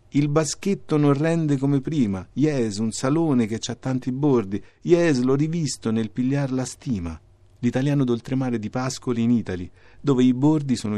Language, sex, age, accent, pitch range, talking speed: Italian, male, 40-59, native, 100-130 Hz, 165 wpm